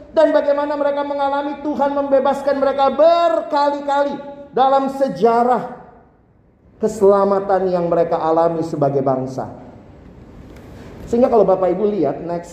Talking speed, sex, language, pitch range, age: 105 wpm, male, Indonesian, 180-270 Hz, 40-59